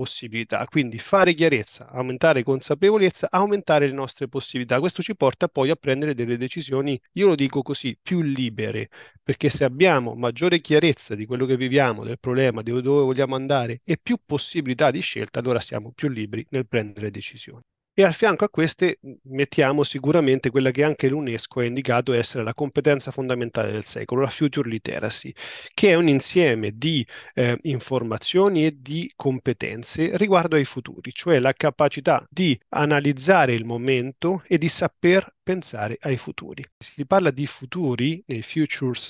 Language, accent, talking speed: Italian, native, 160 wpm